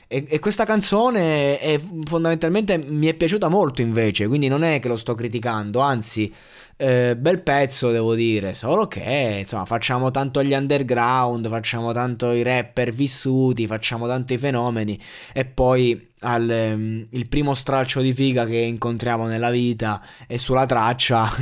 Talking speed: 150 wpm